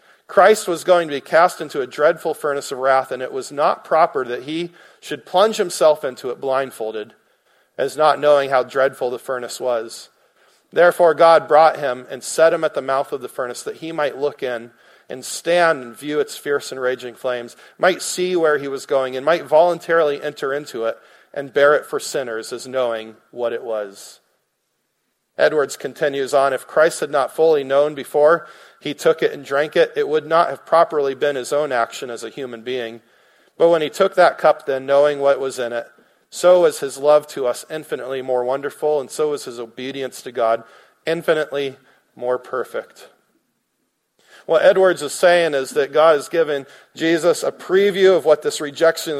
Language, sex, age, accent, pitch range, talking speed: English, male, 40-59, American, 130-170 Hz, 195 wpm